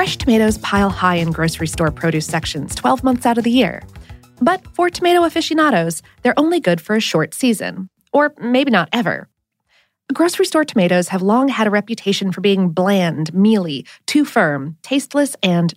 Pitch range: 180-285 Hz